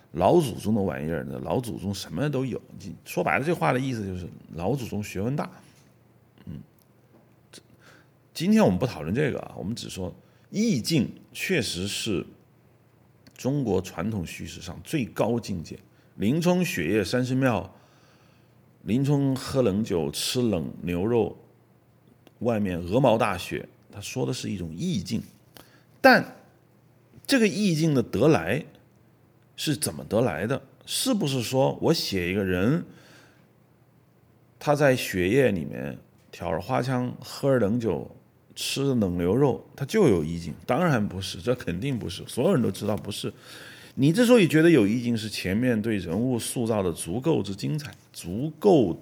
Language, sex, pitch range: Chinese, male, 100-135 Hz